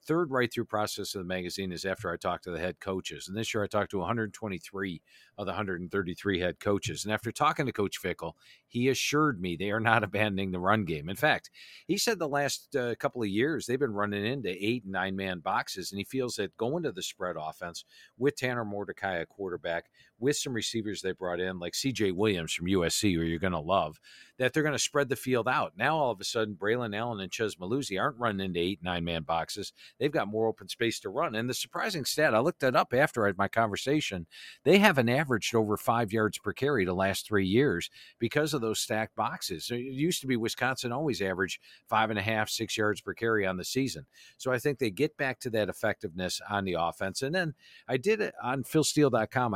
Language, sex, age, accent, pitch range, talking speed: English, male, 50-69, American, 95-125 Hz, 225 wpm